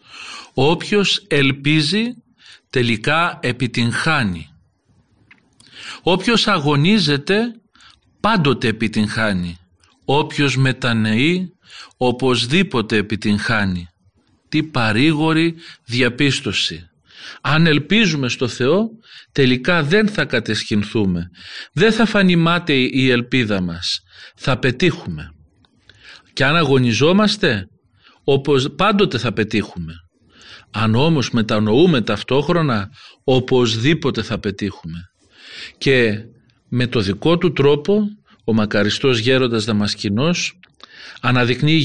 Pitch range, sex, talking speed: 110-160 Hz, male, 80 wpm